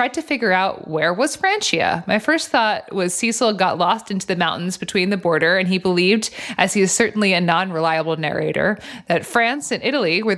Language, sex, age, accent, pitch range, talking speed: English, female, 20-39, American, 175-230 Hz, 195 wpm